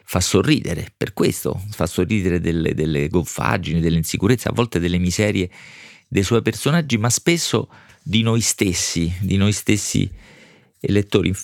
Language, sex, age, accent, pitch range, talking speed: Italian, male, 40-59, native, 90-115 Hz, 135 wpm